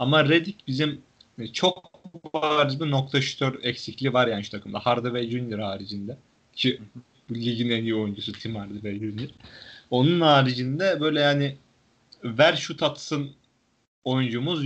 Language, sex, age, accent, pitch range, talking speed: Turkish, male, 30-49, native, 115-145 Hz, 135 wpm